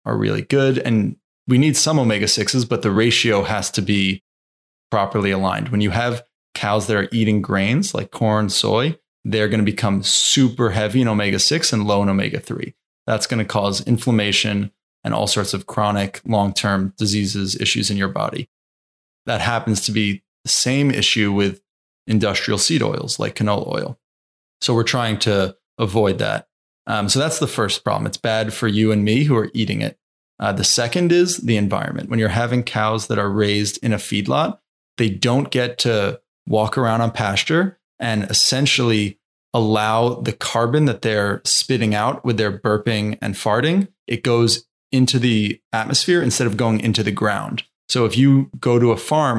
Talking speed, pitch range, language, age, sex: 180 wpm, 105-120 Hz, English, 20-39, male